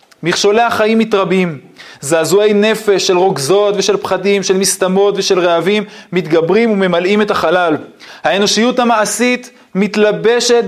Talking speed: 110 wpm